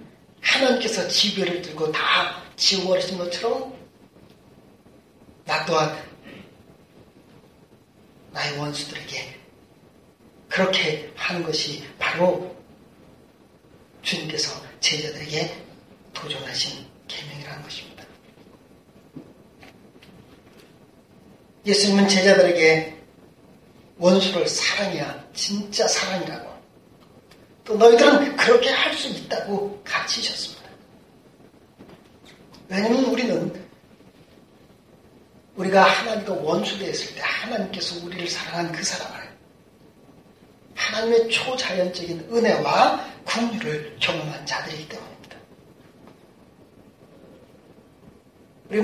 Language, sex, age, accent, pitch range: Korean, male, 40-59, native, 170-230 Hz